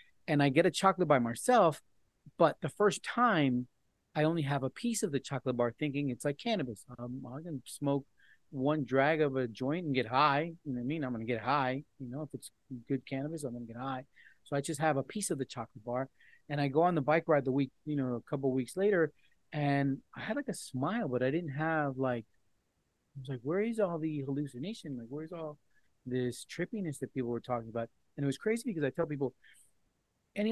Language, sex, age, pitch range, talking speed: English, male, 30-49, 130-165 Hz, 230 wpm